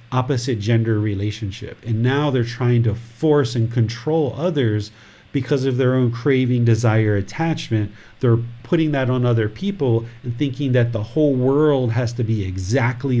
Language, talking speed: English, 160 wpm